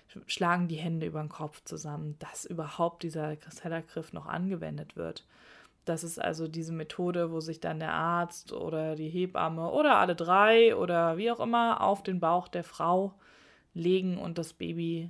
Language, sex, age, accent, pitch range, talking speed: German, female, 20-39, German, 165-190 Hz, 170 wpm